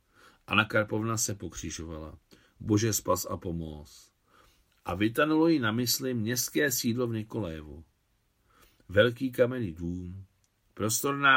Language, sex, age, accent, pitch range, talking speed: Czech, male, 50-69, native, 90-120 Hz, 110 wpm